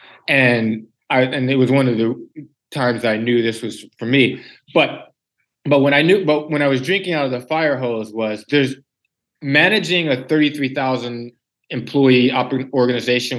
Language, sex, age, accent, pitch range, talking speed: English, male, 30-49, American, 120-140 Hz, 180 wpm